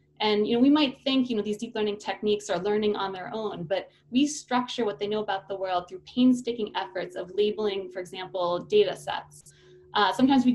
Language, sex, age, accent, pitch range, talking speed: English, female, 20-39, American, 195-245 Hz, 215 wpm